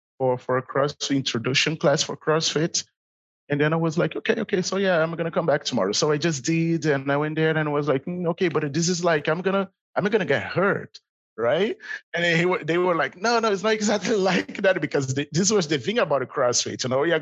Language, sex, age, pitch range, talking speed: English, male, 30-49, 130-175 Hz, 225 wpm